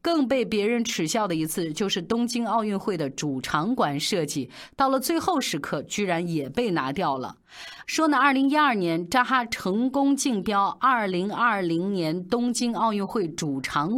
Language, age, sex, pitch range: Chinese, 30-49, female, 170-260 Hz